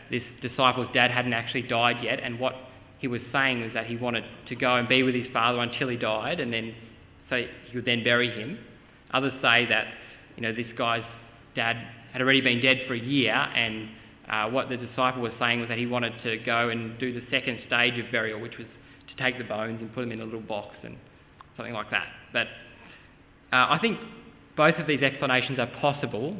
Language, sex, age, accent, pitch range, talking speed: English, male, 20-39, Australian, 120-140 Hz, 220 wpm